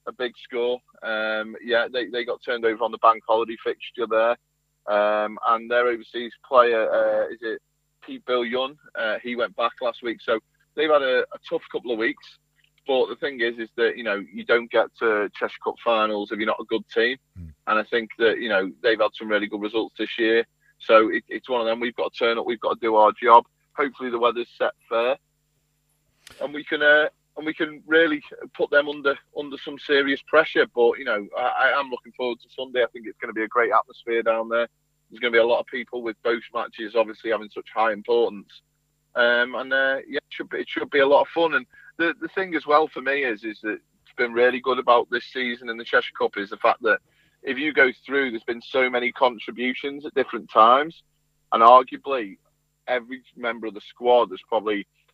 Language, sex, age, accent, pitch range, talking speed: English, male, 30-49, British, 115-150 Hz, 230 wpm